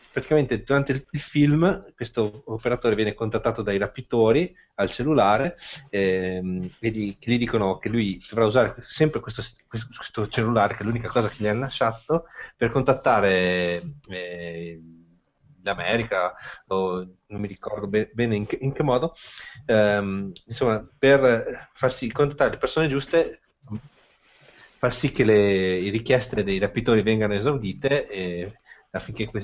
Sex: male